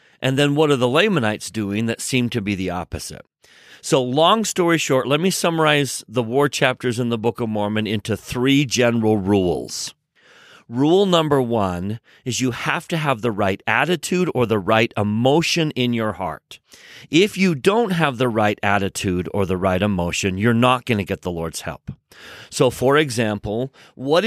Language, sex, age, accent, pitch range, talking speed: English, male, 40-59, American, 115-155 Hz, 180 wpm